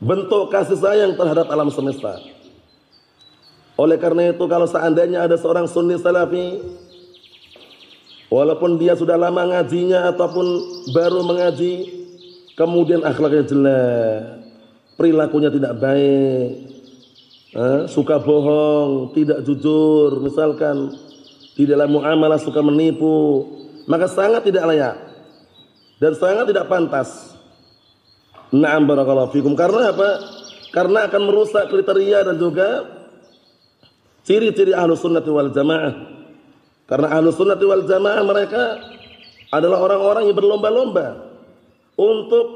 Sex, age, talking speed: male, 30-49, 100 wpm